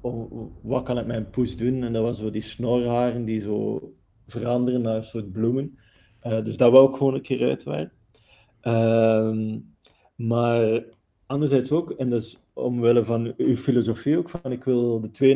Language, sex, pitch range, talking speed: Dutch, male, 105-120 Hz, 175 wpm